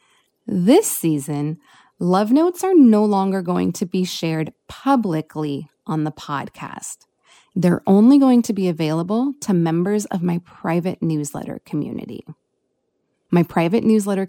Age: 30-49